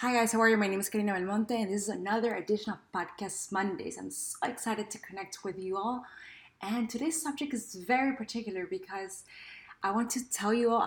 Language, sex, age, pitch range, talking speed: English, female, 20-39, 185-225 Hz, 215 wpm